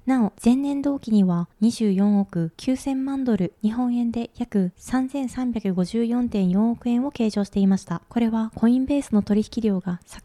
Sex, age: female, 20-39